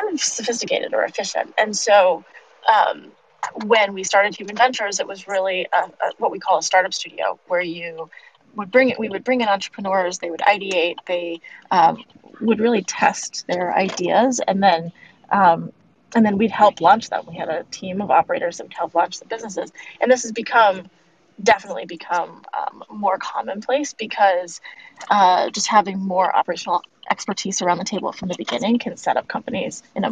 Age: 20-39